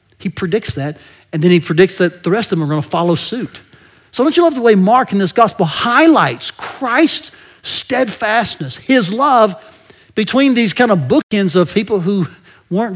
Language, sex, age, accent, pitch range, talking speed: English, male, 40-59, American, 160-215 Hz, 190 wpm